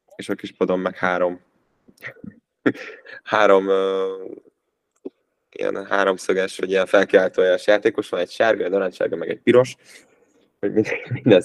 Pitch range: 95-115 Hz